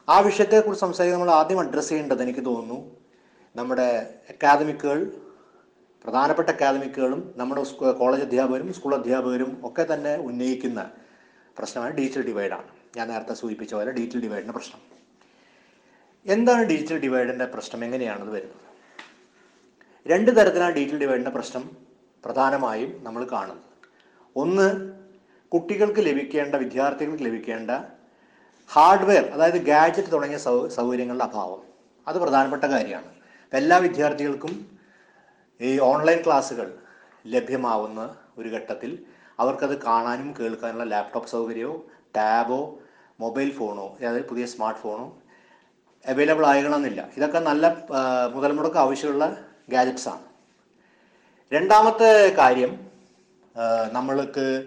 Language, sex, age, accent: Malayalam, male, 30-49, native